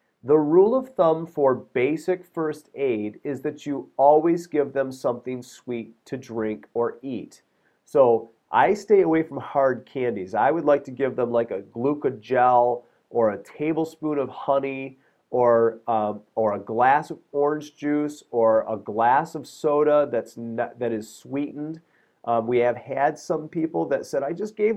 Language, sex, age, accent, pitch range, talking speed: English, male, 40-59, American, 120-150 Hz, 165 wpm